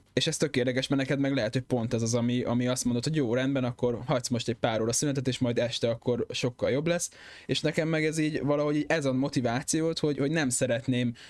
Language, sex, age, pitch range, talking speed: Hungarian, male, 20-39, 115-135 Hz, 250 wpm